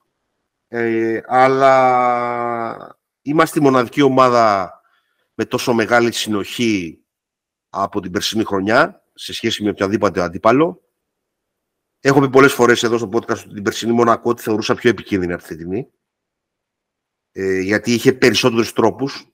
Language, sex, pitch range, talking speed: Greek, male, 105-125 Hz, 135 wpm